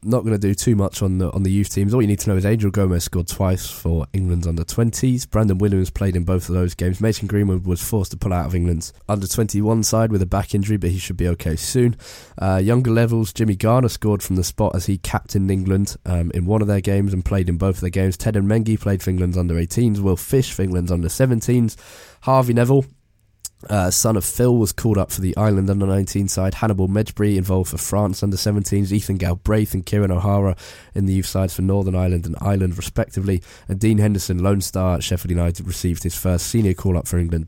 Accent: British